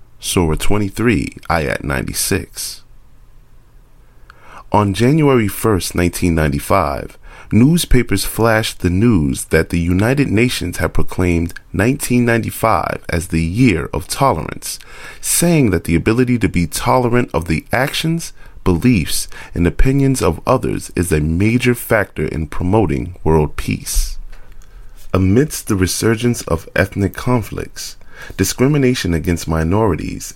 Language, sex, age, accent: English, male, 30-49, American